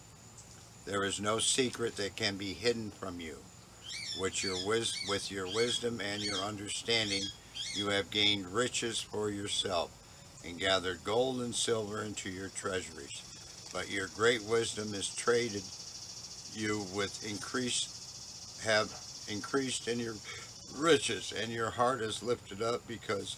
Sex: male